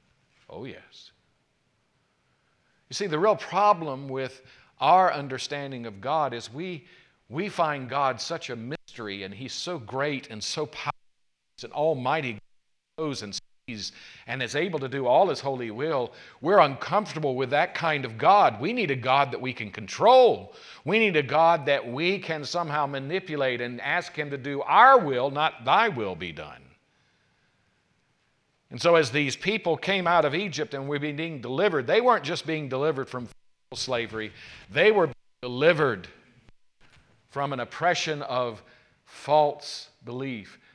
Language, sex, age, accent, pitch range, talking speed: English, male, 50-69, American, 115-155 Hz, 160 wpm